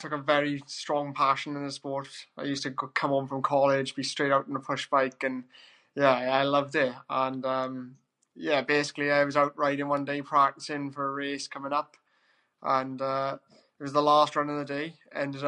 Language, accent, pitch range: English, British, 135-145 Hz